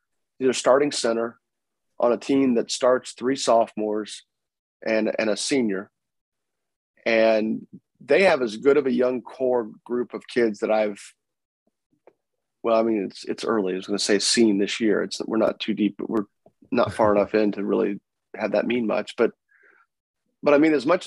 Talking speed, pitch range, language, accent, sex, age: 180 wpm, 110-125 Hz, English, American, male, 30-49